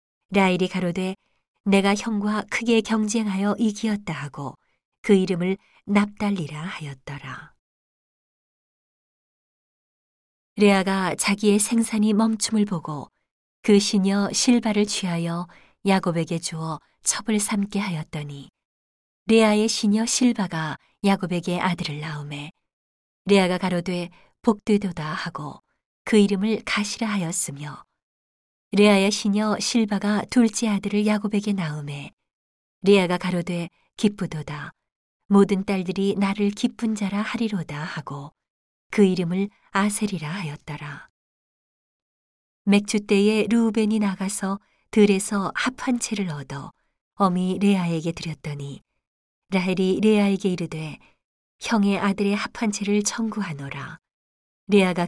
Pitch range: 165-210 Hz